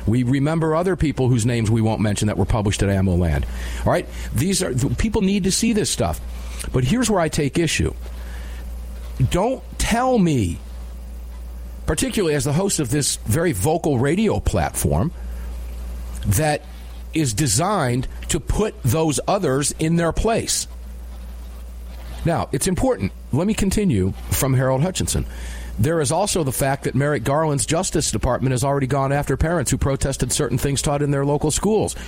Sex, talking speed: male, 165 wpm